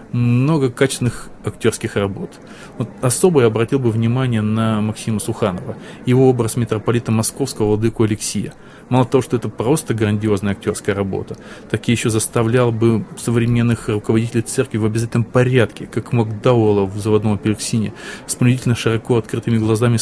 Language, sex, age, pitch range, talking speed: Russian, male, 20-39, 110-125 Hz, 145 wpm